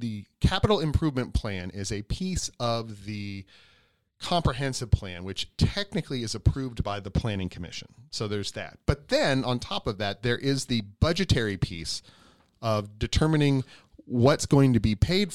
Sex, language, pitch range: male, English, 100-130 Hz